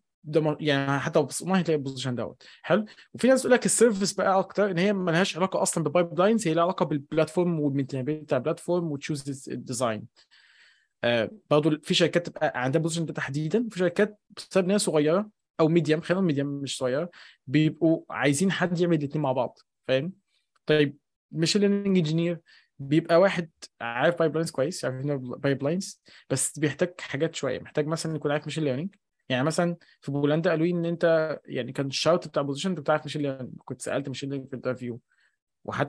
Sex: male